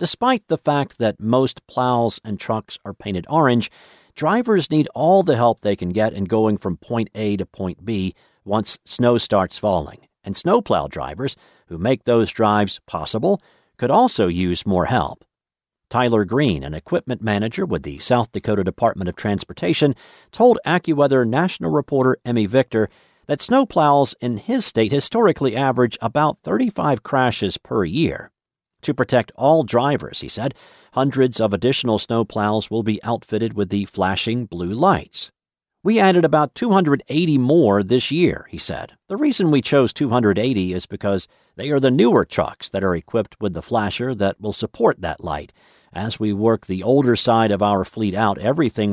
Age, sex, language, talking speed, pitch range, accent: 50-69, male, English, 165 wpm, 105-140 Hz, American